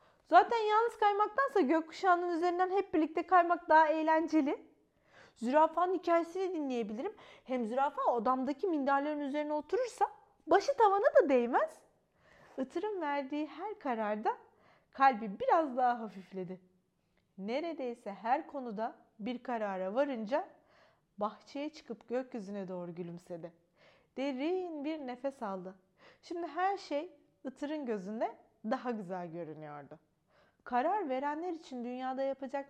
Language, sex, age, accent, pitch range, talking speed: Turkish, female, 30-49, native, 215-315 Hz, 110 wpm